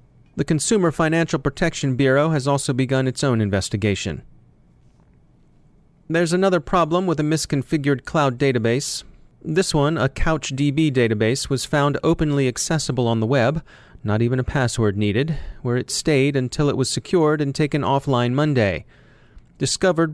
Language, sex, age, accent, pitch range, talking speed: English, male, 30-49, American, 120-150 Hz, 145 wpm